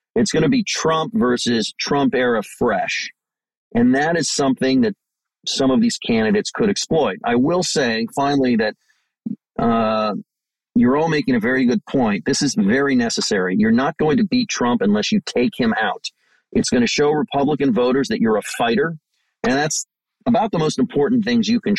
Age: 40-59